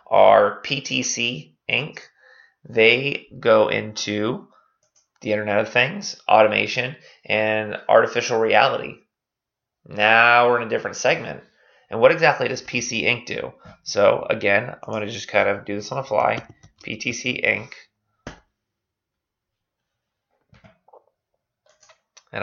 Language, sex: English, male